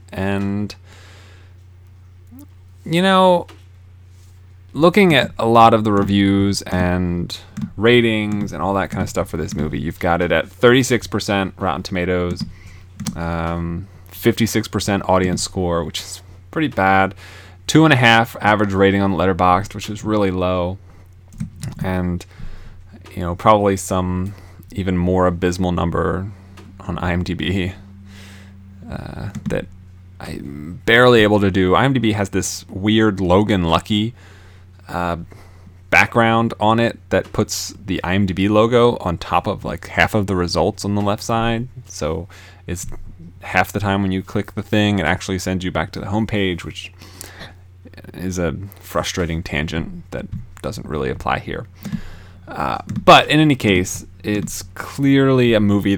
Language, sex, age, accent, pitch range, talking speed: English, male, 20-39, American, 90-105 Hz, 140 wpm